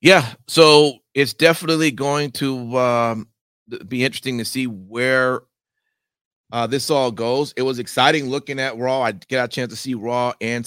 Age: 40-59